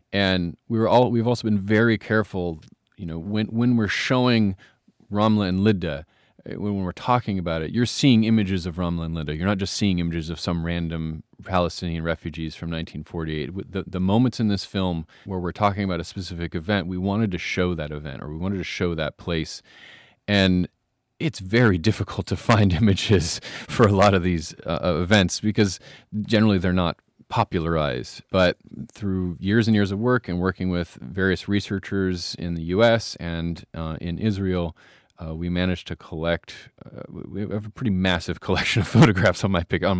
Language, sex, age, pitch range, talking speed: English, male, 30-49, 85-105 Hz, 185 wpm